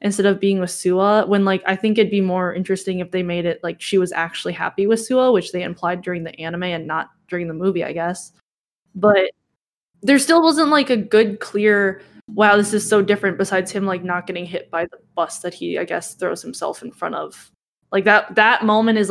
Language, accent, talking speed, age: English, American, 230 wpm, 10-29